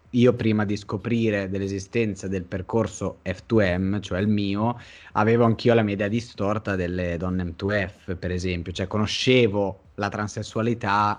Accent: native